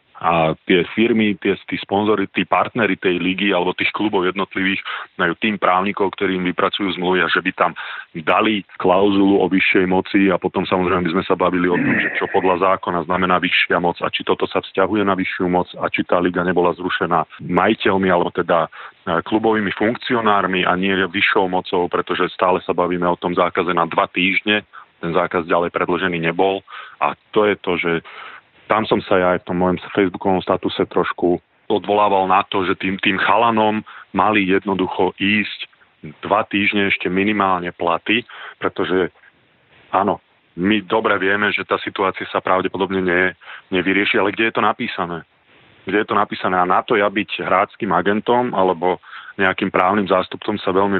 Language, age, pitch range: Slovak, 30-49, 90-100 Hz